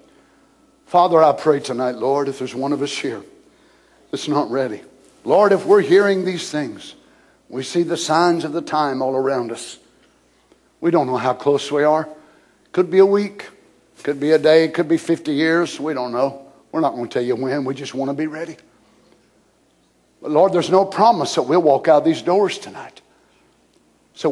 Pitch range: 135-175 Hz